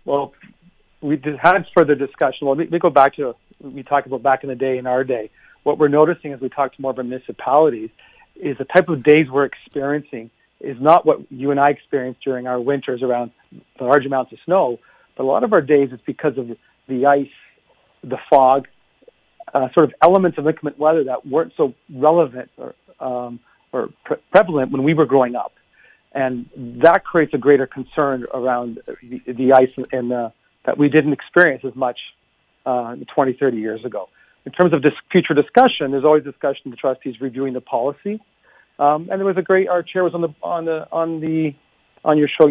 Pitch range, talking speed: 130-155 Hz, 210 wpm